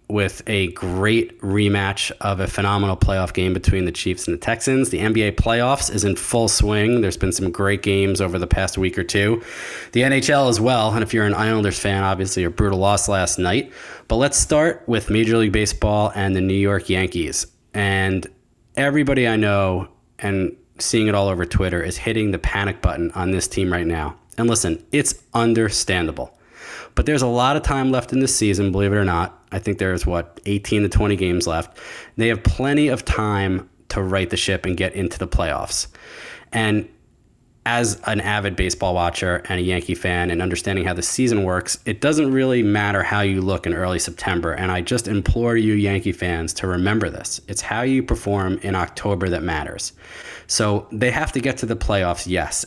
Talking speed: 200 wpm